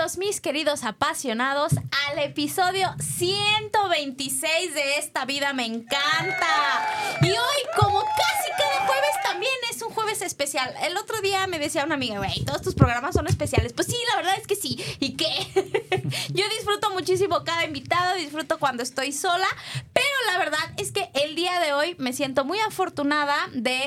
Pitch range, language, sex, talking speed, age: 250-370 Hz, Spanish, female, 170 wpm, 20-39